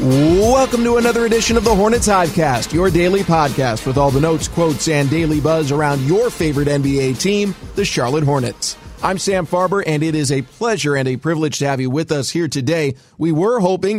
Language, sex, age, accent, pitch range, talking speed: English, male, 30-49, American, 135-165 Hz, 205 wpm